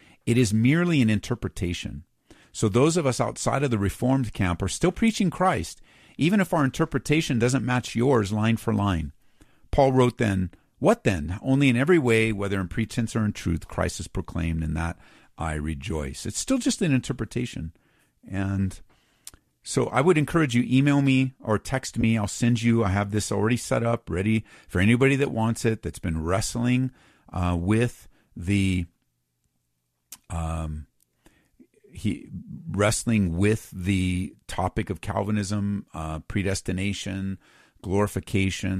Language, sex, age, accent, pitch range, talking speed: English, male, 50-69, American, 90-125 Hz, 150 wpm